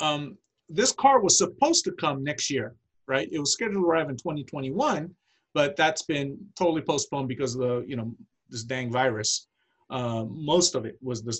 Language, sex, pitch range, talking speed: English, male, 130-170 Hz, 190 wpm